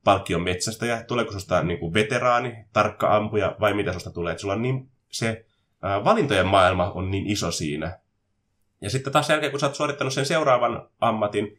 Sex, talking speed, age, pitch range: male, 175 wpm, 20-39, 90-115 Hz